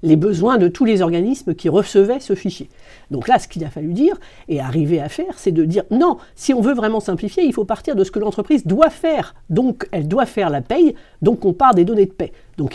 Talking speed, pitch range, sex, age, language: 250 wpm, 170-255 Hz, female, 50-69, French